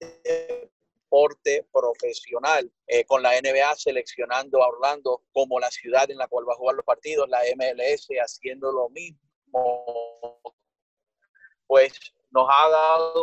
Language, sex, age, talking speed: English, male, 30-49, 130 wpm